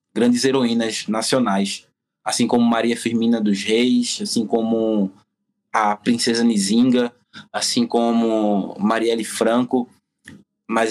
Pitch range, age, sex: 120-150 Hz, 20-39, male